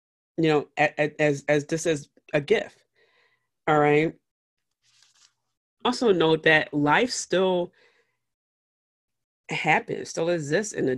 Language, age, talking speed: English, 30-49, 115 wpm